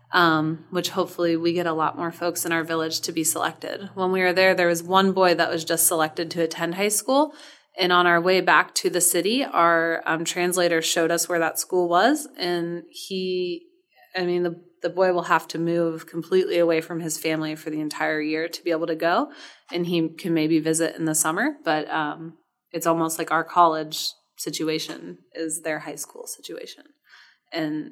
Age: 20-39